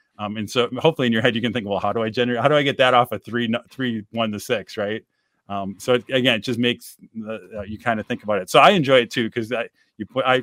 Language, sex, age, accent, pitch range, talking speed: English, male, 30-49, American, 105-125 Hz, 315 wpm